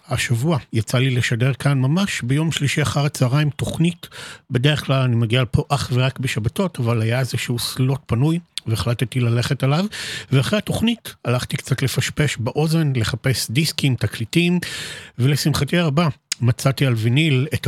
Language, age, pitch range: Hebrew, 50-69, 120-150 Hz